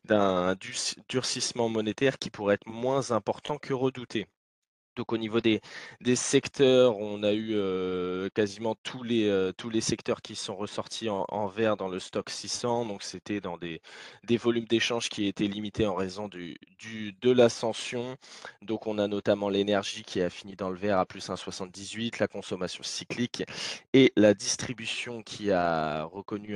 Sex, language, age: male, French, 20-39